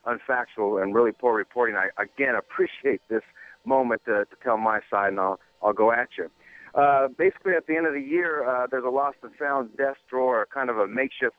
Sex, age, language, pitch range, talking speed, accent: male, 50-69, English, 115-140 Hz, 215 wpm, American